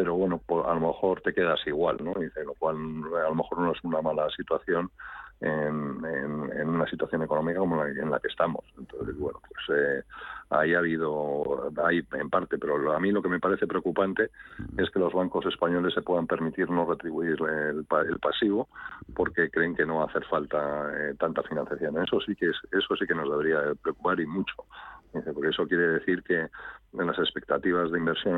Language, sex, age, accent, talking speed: Spanish, male, 50-69, Spanish, 200 wpm